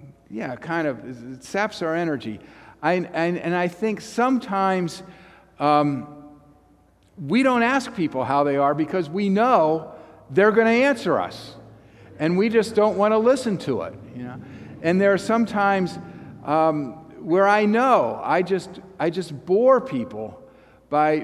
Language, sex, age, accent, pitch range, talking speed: English, male, 50-69, American, 140-195 Hz, 155 wpm